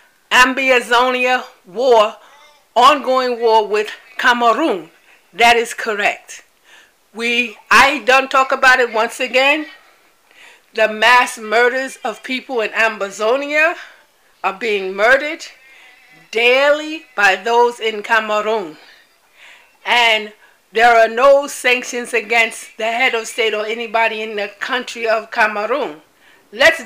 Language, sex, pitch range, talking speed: English, female, 225-275 Hz, 110 wpm